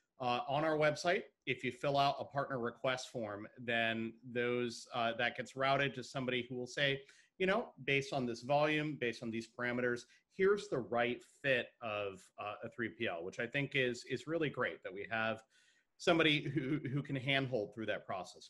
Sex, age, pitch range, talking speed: male, 30-49, 115-140 Hz, 190 wpm